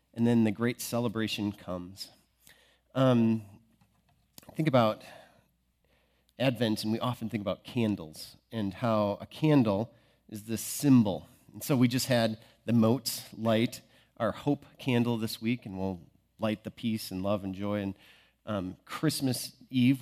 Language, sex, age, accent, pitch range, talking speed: English, male, 40-59, American, 100-125 Hz, 145 wpm